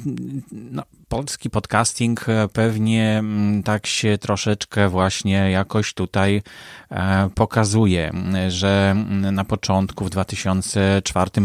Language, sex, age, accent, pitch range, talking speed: Polish, male, 30-49, native, 100-120 Hz, 80 wpm